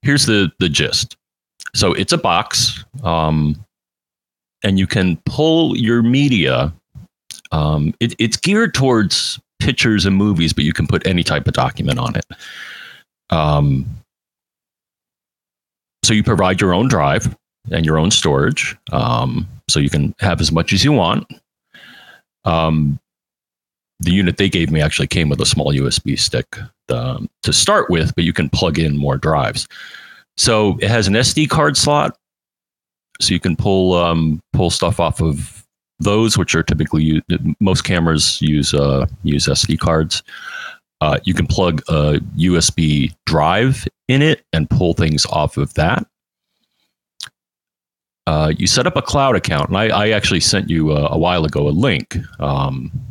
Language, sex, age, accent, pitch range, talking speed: English, male, 40-59, American, 75-105 Hz, 160 wpm